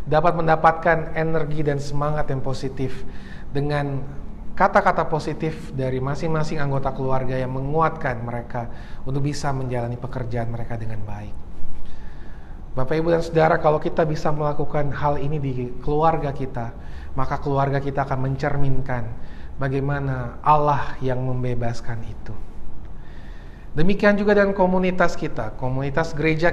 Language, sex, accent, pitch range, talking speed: Indonesian, male, native, 125-160 Hz, 120 wpm